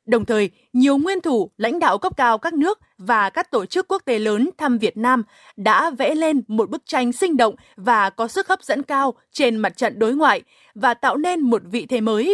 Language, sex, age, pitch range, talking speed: Vietnamese, female, 20-39, 225-280 Hz, 230 wpm